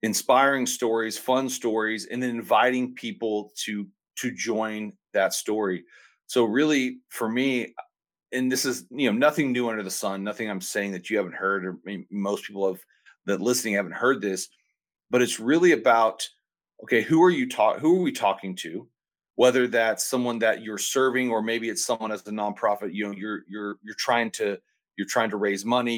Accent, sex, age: American, male, 40-59